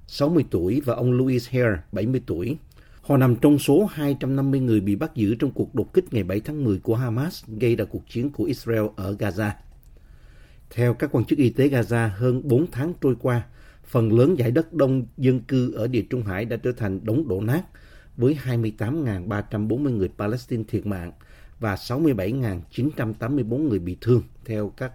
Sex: male